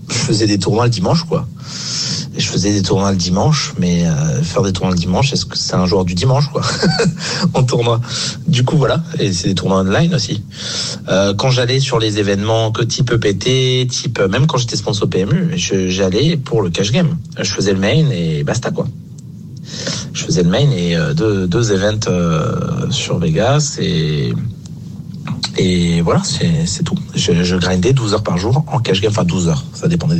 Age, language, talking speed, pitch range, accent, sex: 30-49, French, 205 wpm, 100-155 Hz, French, male